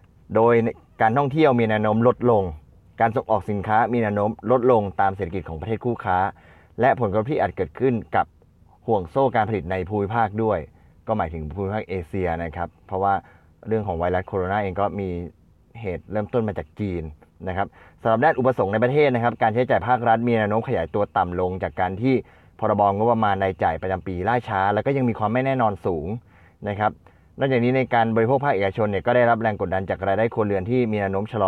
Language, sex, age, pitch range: Thai, male, 20-39, 90-115 Hz